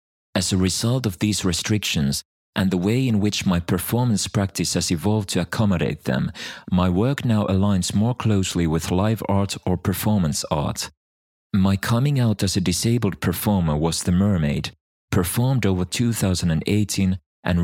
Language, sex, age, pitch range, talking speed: English, male, 30-49, 90-110 Hz, 155 wpm